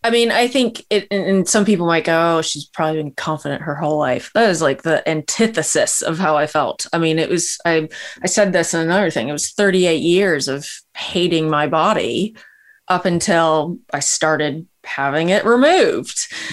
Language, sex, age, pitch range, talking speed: English, female, 20-39, 160-200 Hz, 195 wpm